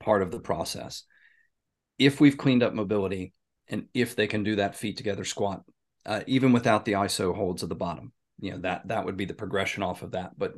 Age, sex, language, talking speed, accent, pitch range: 40-59, male, English, 220 wpm, American, 95-115 Hz